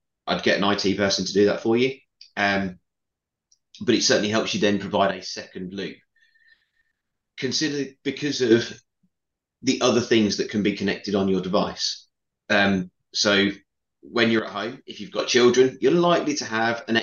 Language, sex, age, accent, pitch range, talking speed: English, male, 30-49, British, 95-120 Hz, 175 wpm